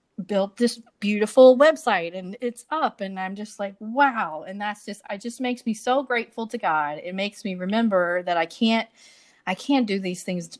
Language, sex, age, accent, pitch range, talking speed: English, female, 30-49, American, 185-255 Hz, 200 wpm